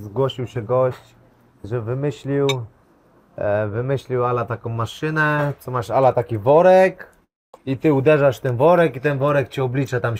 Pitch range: 125-145 Hz